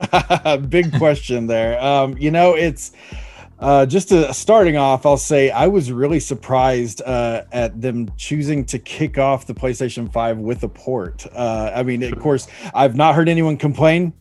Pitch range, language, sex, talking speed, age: 120-150 Hz, Arabic, male, 170 wpm, 30-49